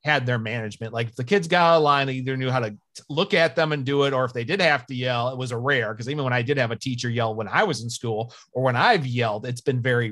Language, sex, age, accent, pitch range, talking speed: English, male, 30-49, American, 115-145 Hz, 320 wpm